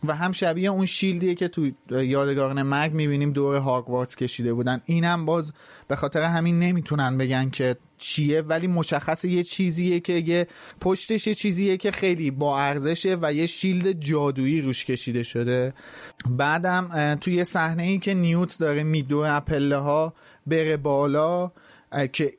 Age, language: 30-49, Persian